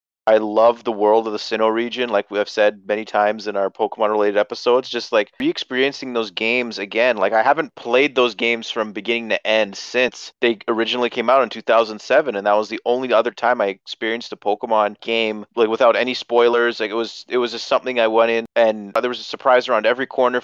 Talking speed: 215 wpm